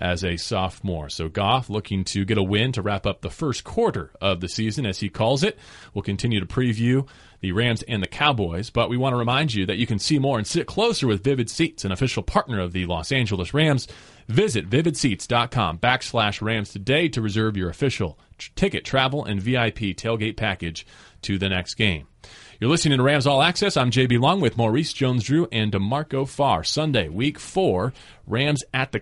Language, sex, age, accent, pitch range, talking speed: English, male, 30-49, American, 95-130 Hz, 195 wpm